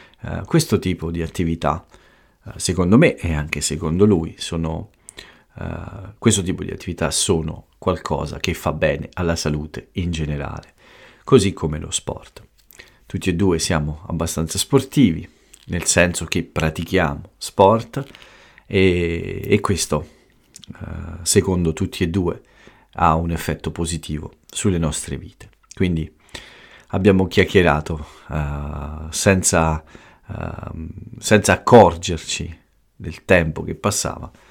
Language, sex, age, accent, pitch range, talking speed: Italian, male, 40-59, native, 80-95 Hz, 120 wpm